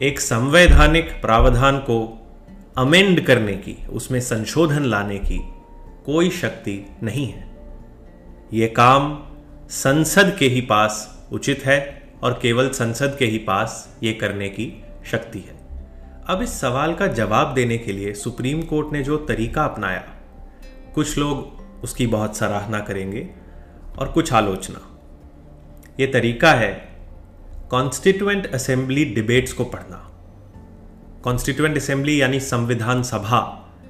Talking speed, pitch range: 125 wpm, 100-140 Hz